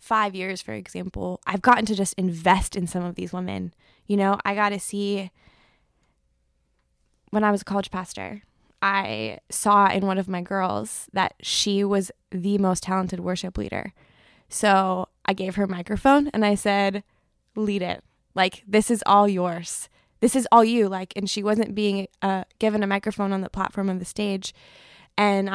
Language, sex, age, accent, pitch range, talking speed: English, female, 20-39, American, 185-210 Hz, 180 wpm